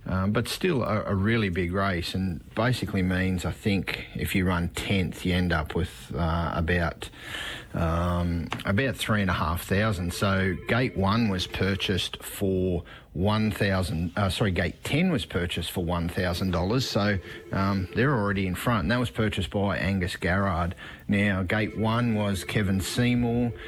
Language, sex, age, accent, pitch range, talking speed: English, male, 30-49, Australian, 95-115 Hz, 150 wpm